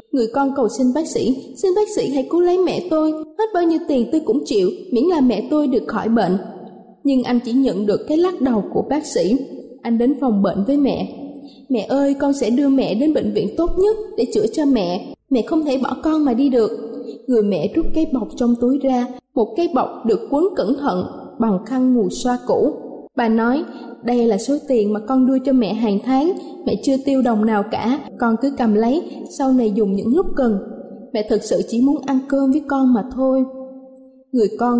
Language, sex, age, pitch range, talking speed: Vietnamese, female, 20-39, 230-280 Hz, 225 wpm